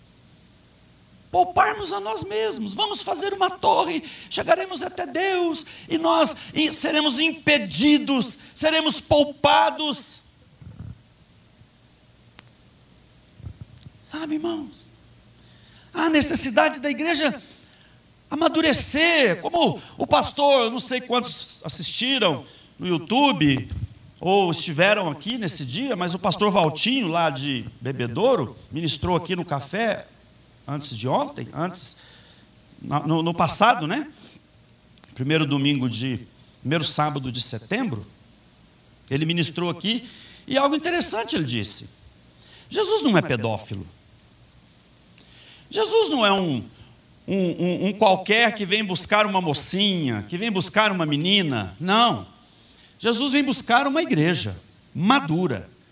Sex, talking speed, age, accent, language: male, 110 wpm, 60-79, Brazilian, Portuguese